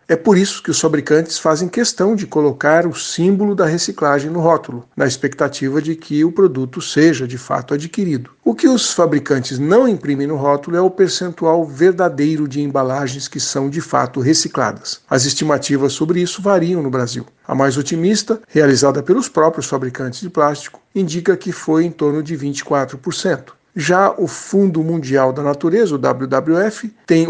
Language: Portuguese